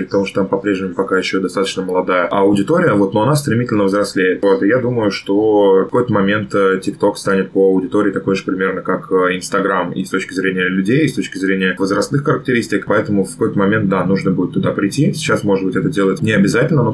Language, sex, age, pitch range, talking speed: Russian, male, 20-39, 95-110 Hz, 215 wpm